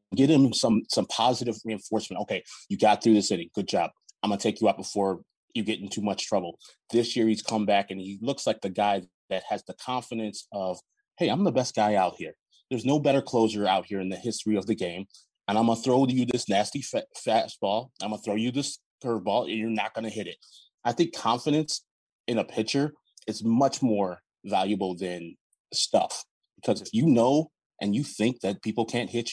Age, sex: 20-39, male